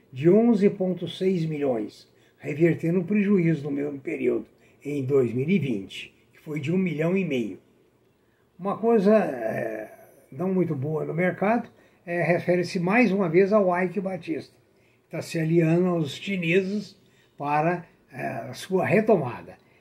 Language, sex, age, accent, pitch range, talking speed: Portuguese, male, 60-79, Brazilian, 150-195 Hz, 135 wpm